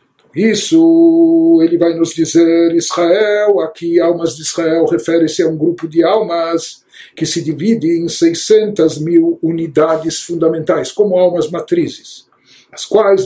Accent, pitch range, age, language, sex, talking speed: Brazilian, 160-215 Hz, 60-79, Portuguese, male, 130 wpm